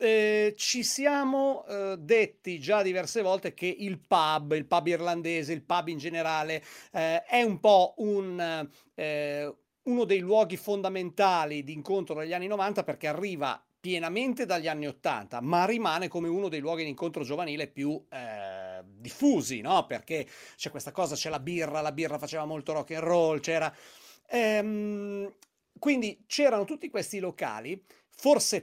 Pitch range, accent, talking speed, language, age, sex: 155-210 Hz, native, 155 wpm, Italian, 40-59, male